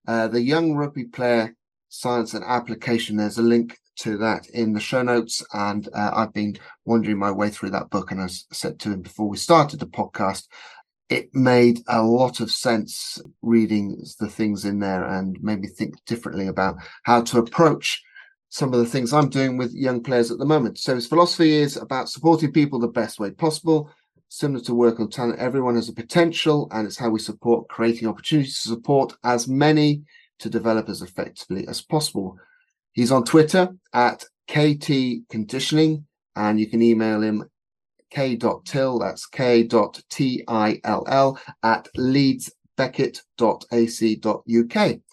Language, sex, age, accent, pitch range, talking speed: English, male, 30-49, British, 110-145 Hz, 160 wpm